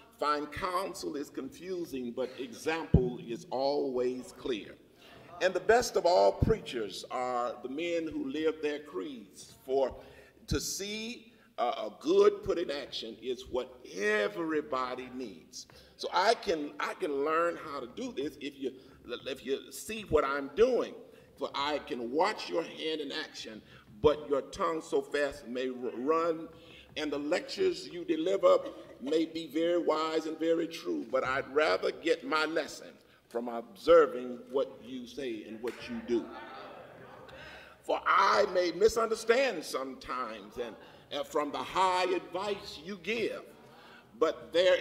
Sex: male